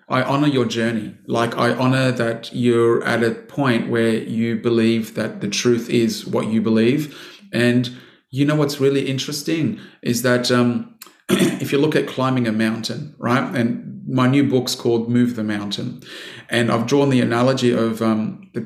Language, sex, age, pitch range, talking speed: English, male, 30-49, 115-130 Hz, 175 wpm